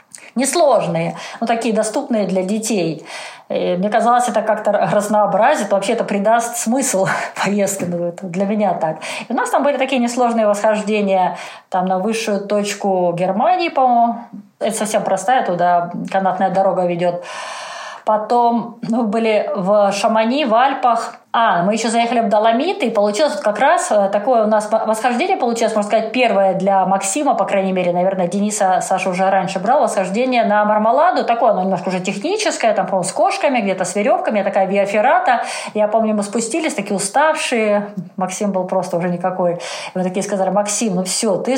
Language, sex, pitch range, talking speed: Russian, female, 190-235 Hz, 165 wpm